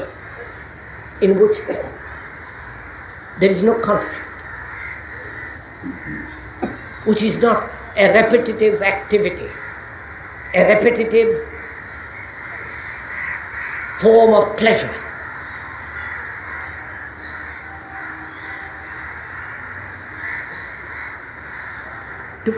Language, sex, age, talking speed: English, female, 60-79, 50 wpm